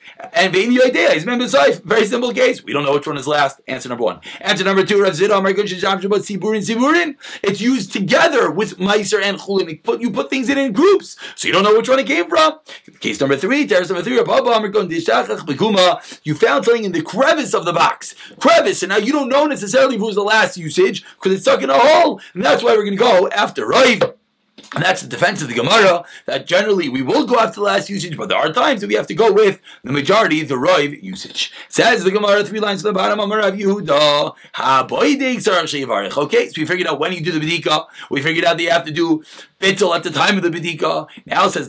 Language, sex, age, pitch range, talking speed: English, male, 30-49, 180-255 Hz, 215 wpm